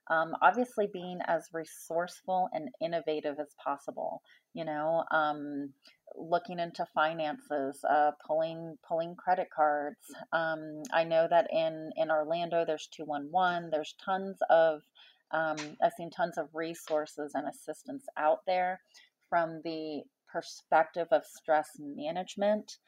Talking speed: 125 wpm